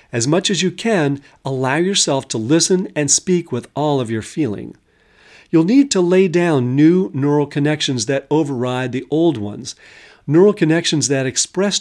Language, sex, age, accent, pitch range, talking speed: English, male, 50-69, American, 125-175 Hz, 170 wpm